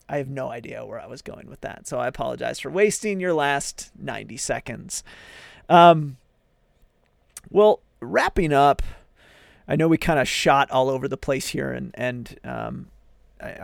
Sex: male